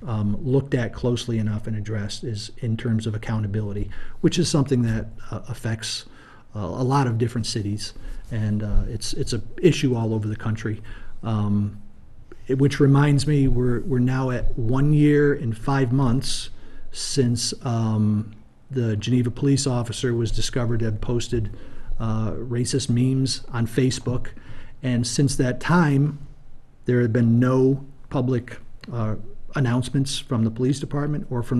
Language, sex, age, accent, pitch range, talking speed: English, male, 40-59, American, 110-135 Hz, 150 wpm